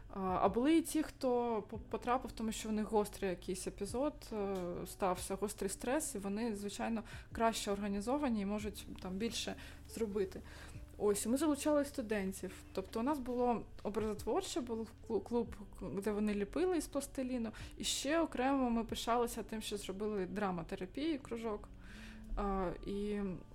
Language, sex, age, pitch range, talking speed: Ukrainian, female, 20-39, 205-270 Hz, 135 wpm